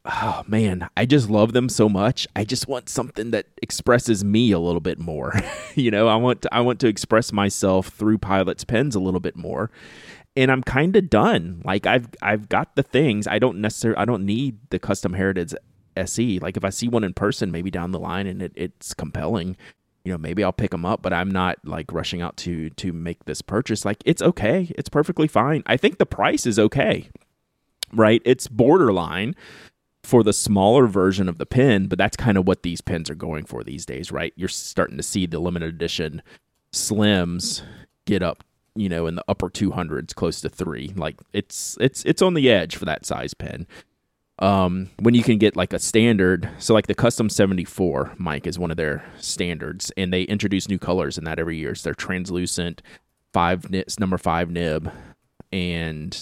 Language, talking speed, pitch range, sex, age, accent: English, 205 wpm, 90-110 Hz, male, 30-49, American